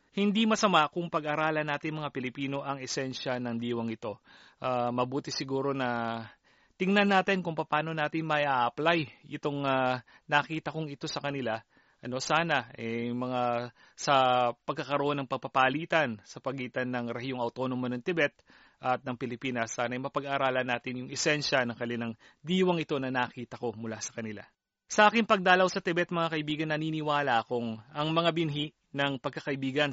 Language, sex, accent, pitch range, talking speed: Filipino, male, native, 130-160 Hz, 155 wpm